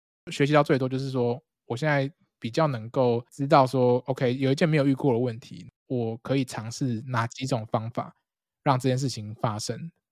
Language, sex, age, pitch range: Chinese, male, 20-39, 120-145 Hz